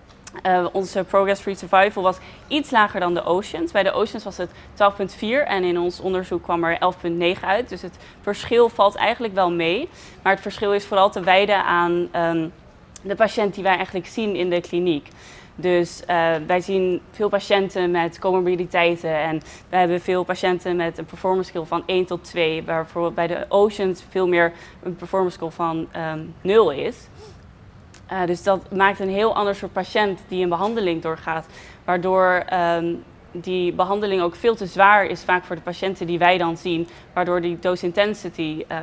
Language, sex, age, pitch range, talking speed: Dutch, female, 20-39, 175-195 Hz, 180 wpm